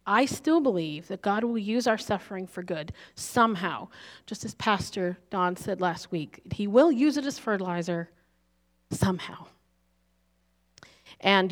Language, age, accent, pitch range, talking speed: English, 40-59, American, 175-235 Hz, 140 wpm